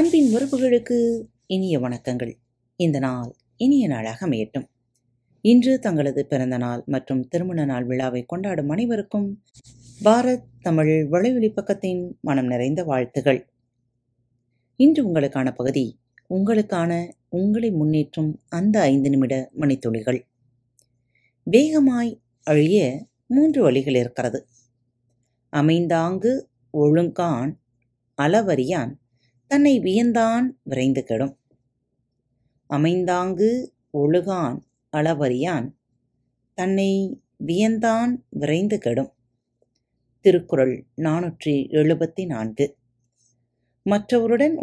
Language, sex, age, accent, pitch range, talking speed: Tamil, female, 30-49, native, 125-195 Hz, 80 wpm